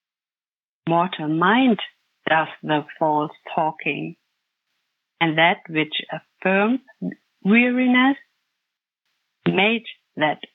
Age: 50-69